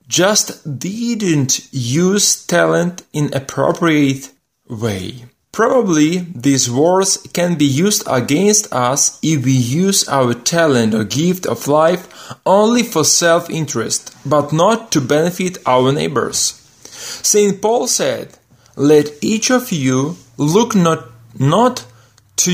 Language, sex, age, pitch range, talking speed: Ukrainian, male, 30-49, 130-180 Hz, 115 wpm